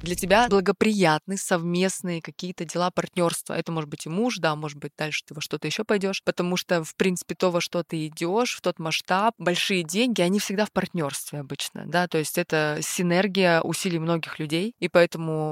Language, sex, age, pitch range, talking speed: Russian, female, 20-39, 160-195 Hz, 195 wpm